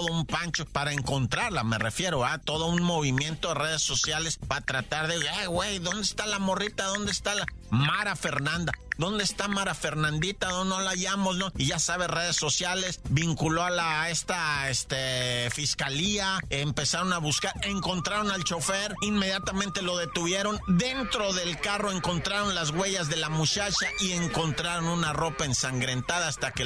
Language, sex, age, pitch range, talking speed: Spanish, male, 40-59, 150-200 Hz, 165 wpm